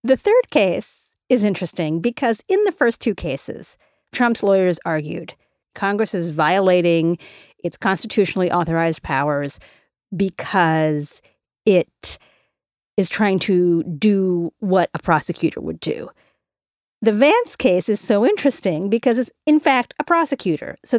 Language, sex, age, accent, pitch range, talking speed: English, female, 40-59, American, 175-255 Hz, 130 wpm